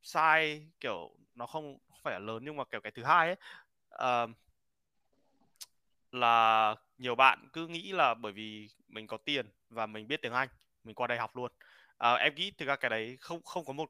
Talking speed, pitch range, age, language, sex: 205 wpm, 110-150 Hz, 20-39, Vietnamese, male